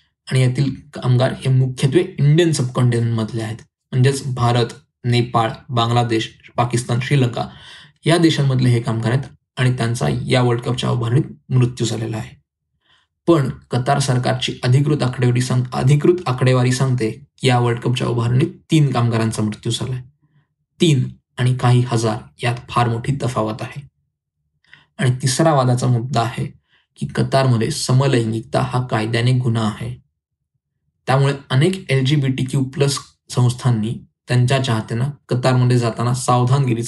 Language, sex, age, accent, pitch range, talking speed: Marathi, male, 20-39, native, 120-135 Hz, 130 wpm